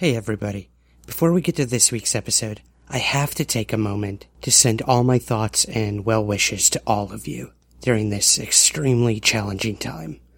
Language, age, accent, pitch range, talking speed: English, 30-49, American, 100-125 Hz, 185 wpm